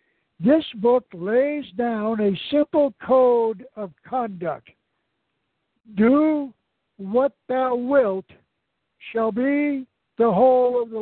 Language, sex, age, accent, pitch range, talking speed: English, male, 60-79, American, 175-235 Hz, 105 wpm